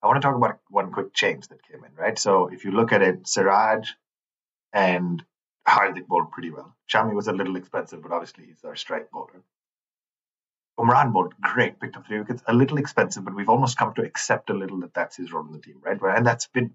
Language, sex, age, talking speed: English, male, 30-49, 230 wpm